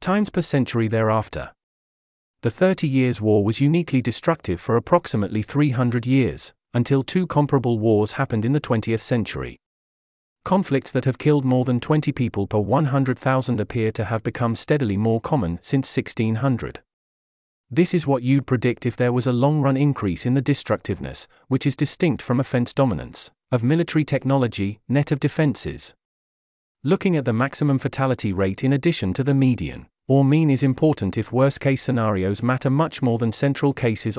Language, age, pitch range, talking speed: English, 40-59, 110-140 Hz, 165 wpm